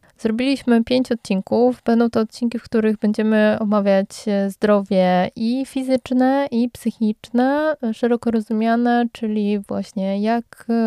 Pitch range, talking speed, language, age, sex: 210-240 Hz, 110 wpm, Polish, 20-39, female